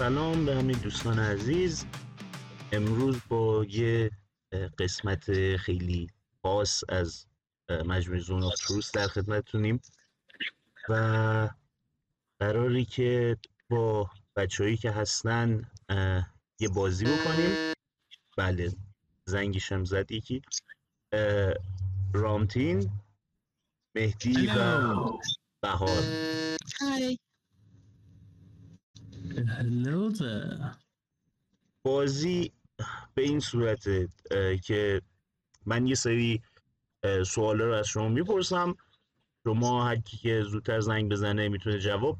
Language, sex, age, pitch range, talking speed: Persian, male, 30-49, 100-120 Hz, 80 wpm